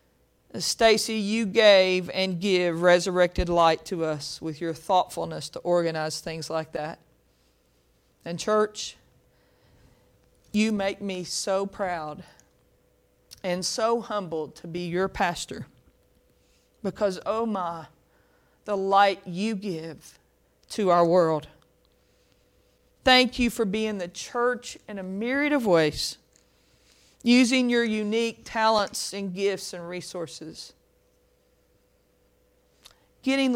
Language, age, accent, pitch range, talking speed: English, 40-59, American, 175-255 Hz, 110 wpm